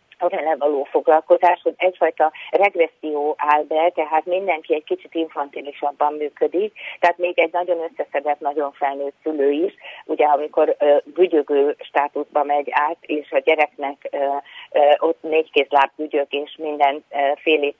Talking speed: 140 wpm